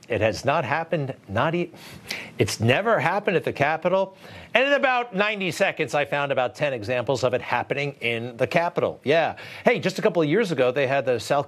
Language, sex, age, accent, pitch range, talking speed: English, male, 50-69, American, 110-160 Hz, 210 wpm